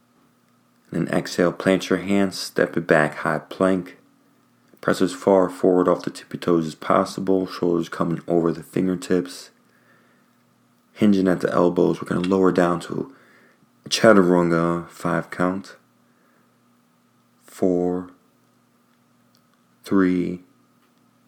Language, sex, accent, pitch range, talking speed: English, male, American, 85-95 Hz, 115 wpm